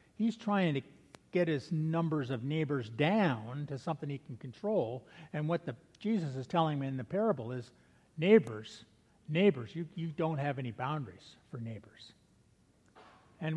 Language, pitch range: English, 135-190 Hz